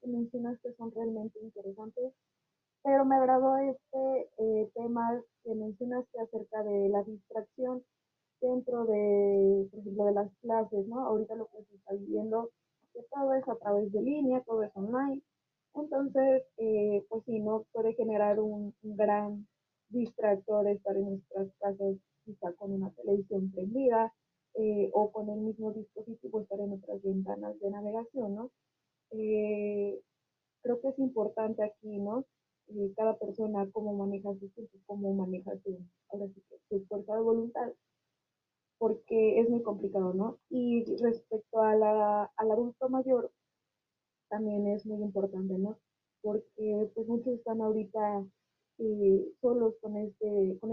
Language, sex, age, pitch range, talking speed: Spanish, female, 20-39, 200-230 Hz, 140 wpm